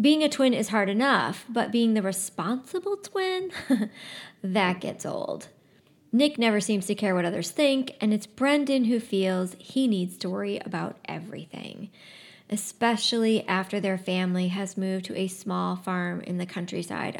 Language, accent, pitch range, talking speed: English, American, 185-225 Hz, 160 wpm